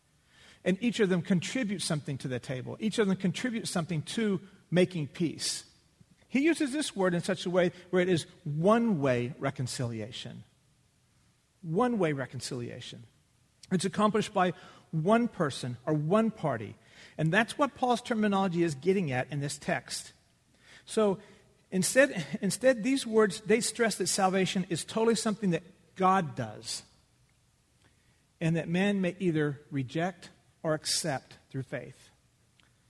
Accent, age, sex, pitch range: American, 50-69, male, 155-215 Hz